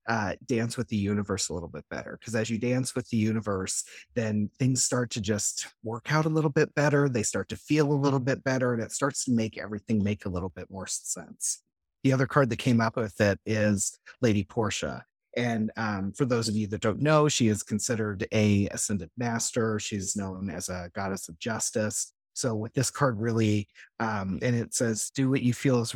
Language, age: English, 30-49